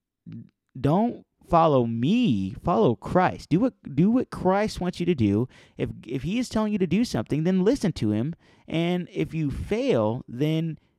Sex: male